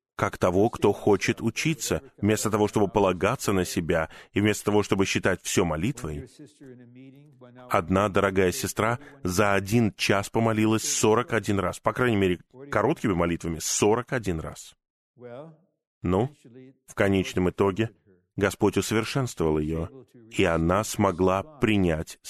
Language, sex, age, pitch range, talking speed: Russian, male, 20-39, 95-125 Hz, 120 wpm